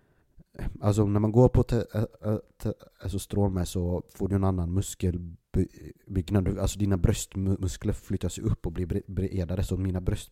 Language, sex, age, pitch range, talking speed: Swedish, male, 30-49, 85-100 Hz, 155 wpm